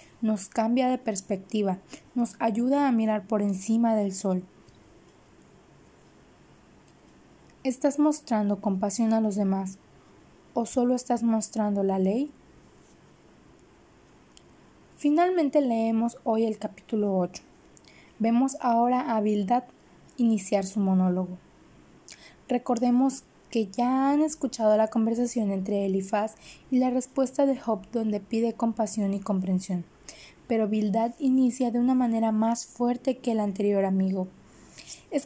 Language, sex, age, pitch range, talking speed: Spanish, female, 20-39, 210-250 Hz, 115 wpm